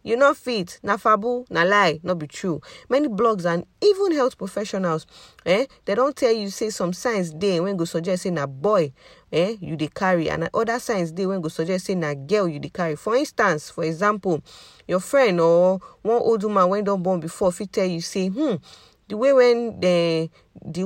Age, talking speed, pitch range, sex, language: 40-59, 205 wpm, 170-210 Hz, female, English